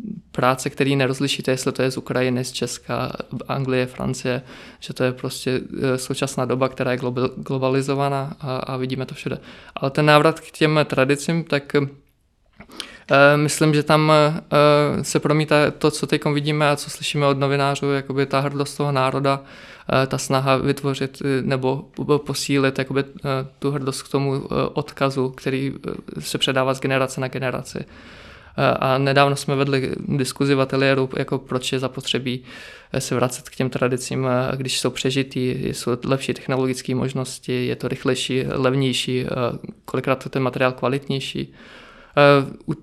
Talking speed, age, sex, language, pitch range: 140 wpm, 20-39, male, Czech, 130-145 Hz